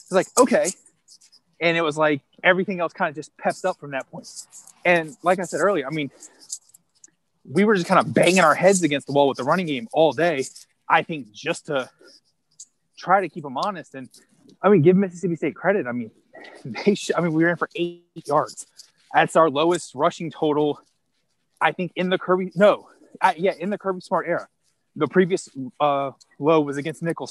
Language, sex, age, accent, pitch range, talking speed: English, male, 20-39, American, 140-180 Hz, 205 wpm